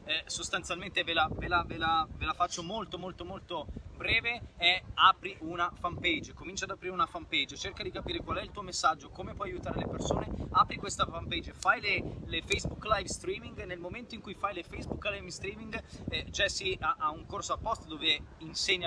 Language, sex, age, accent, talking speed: Italian, male, 20-39, native, 210 wpm